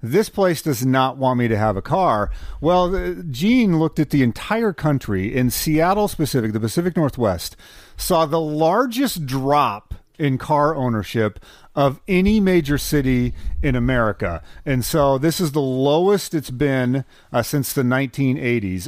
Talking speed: 155 wpm